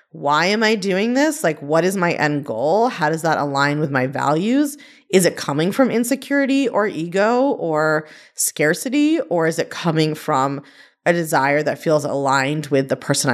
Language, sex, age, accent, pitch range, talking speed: English, female, 30-49, American, 150-205 Hz, 180 wpm